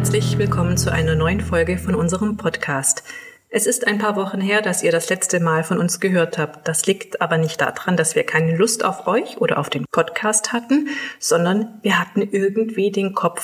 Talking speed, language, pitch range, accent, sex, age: 205 wpm, German, 170-210 Hz, German, female, 30-49